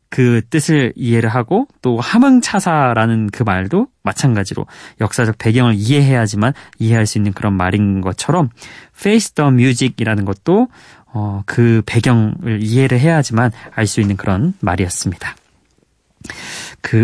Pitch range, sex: 110-155 Hz, male